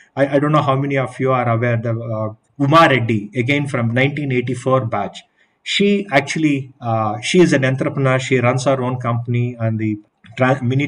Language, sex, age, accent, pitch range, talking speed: English, male, 30-49, Indian, 115-145 Hz, 180 wpm